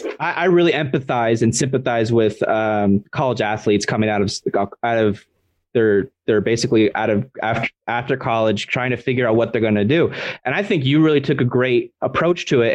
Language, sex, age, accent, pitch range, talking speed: English, male, 20-39, American, 115-145 Hz, 200 wpm